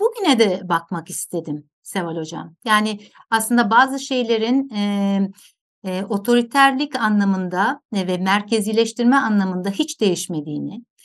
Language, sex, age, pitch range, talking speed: Turkish, female, 60-79, 195-255 Hz, 105 wpm